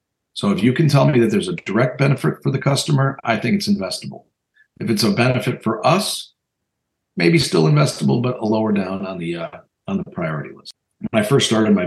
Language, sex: English, male